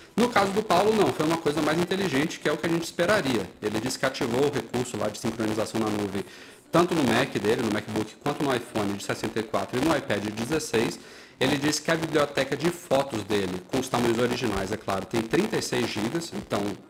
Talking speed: 215 wpm